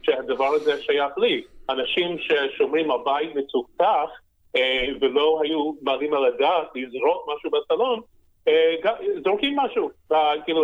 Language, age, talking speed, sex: Hebrew, 30-49, 105 wpm, male